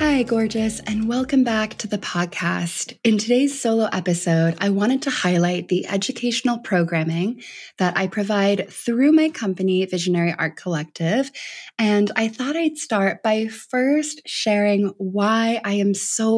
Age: 20-39